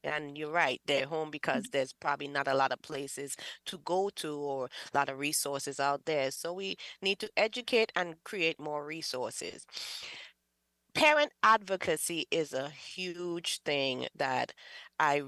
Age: 20-39